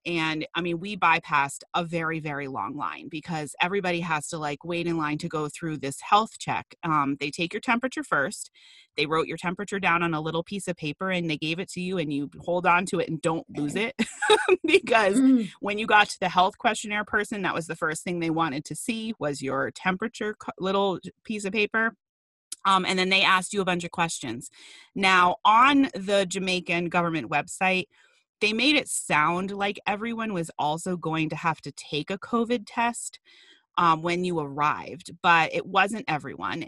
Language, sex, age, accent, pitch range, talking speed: English, female, 30-49, American, 165-205 Hz, 200 wpm